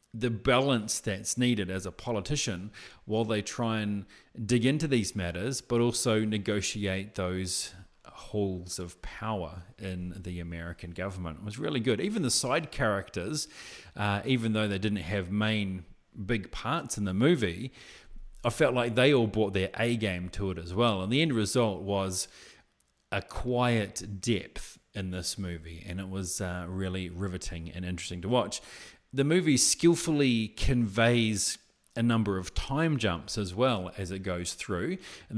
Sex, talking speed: male, 160 wpm